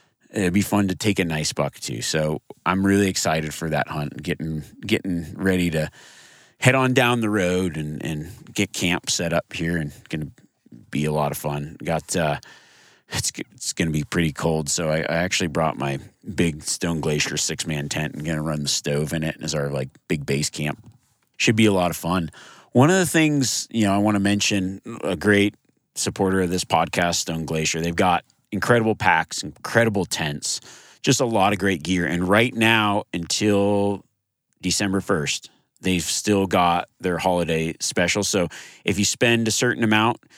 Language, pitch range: English, 85-105 Hz